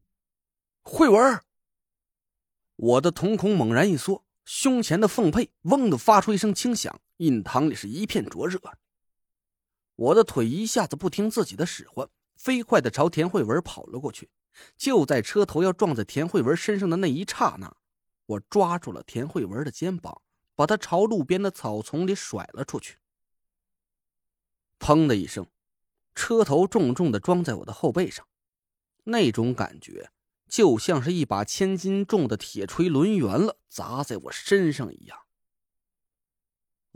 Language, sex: Chinese, male